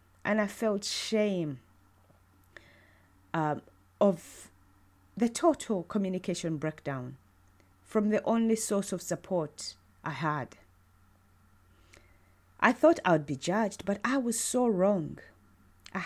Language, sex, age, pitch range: English, female, 30-49, 135-220 Hz